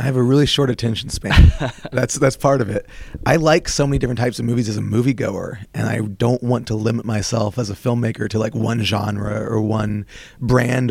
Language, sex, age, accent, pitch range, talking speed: English, male, 30-49, American, 105-125 Hz, 220 wpm